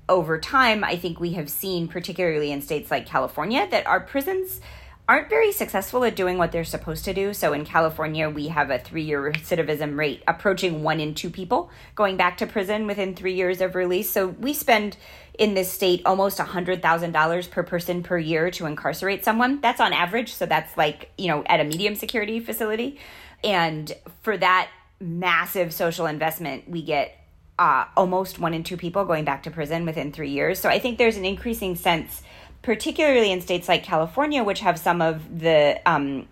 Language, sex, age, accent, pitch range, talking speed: English, female, 30-49, American, 160-205 Hz, 190 wpm